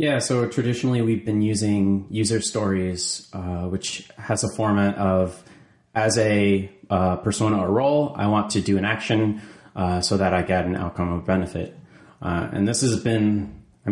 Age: 30-49